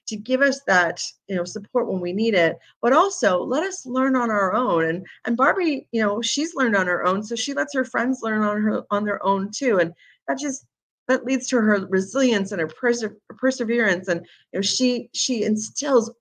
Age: 30-49